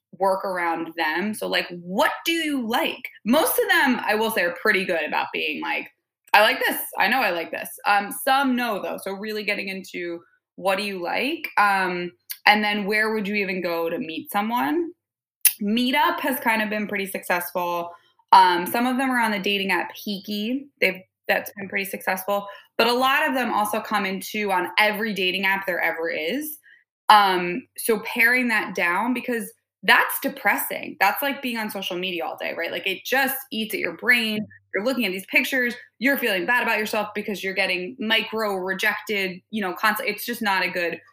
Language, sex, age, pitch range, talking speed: English, female, 20-39, 185-245 Hz, 195 wpm